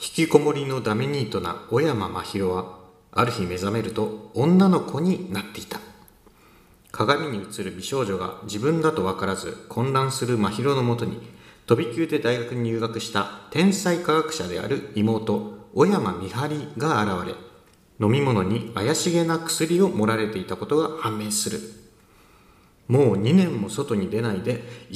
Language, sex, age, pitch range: Japanese, male, 40-59, 110-160 Hz